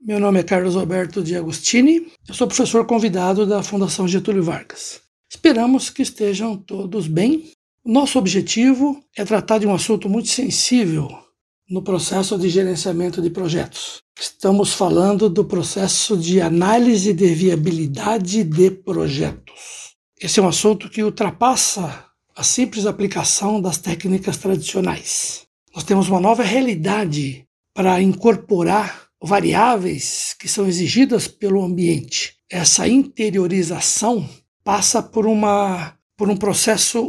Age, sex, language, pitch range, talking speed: 60-79, male, Portuguese, 185-230 Hz, 125 wpm